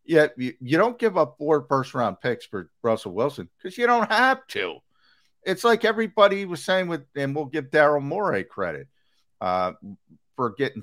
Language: English